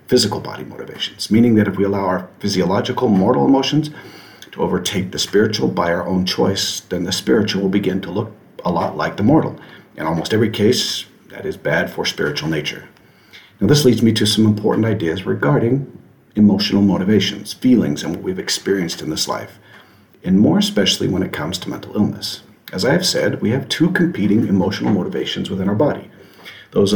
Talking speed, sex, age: 185 wpm, male, 50-69